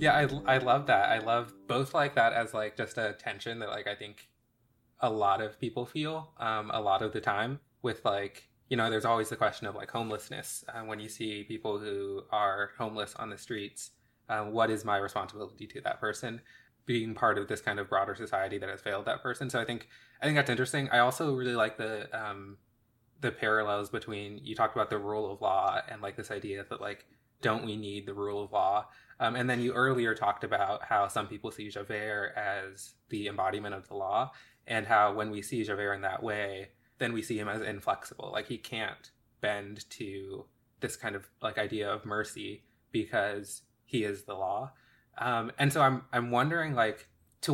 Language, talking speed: English, 210 wpm